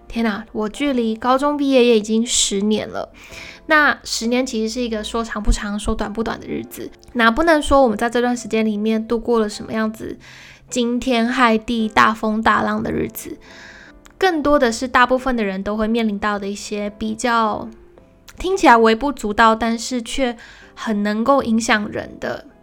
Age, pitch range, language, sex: 10-29, 215-250 Hz, Chinese, female